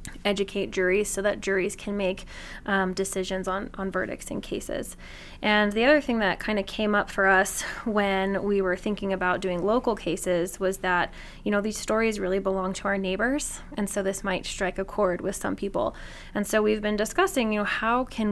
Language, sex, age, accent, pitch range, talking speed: English, female, 20-39, American, 190-215 Hz, 205 wpm